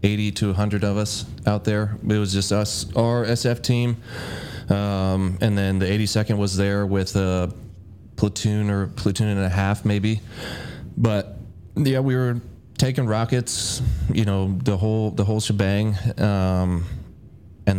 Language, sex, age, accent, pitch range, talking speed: English, male, 20-39, American, 95-110 Hz, 155 wpm